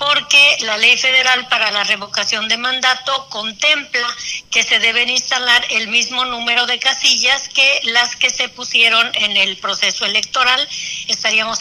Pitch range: 225-265 Hz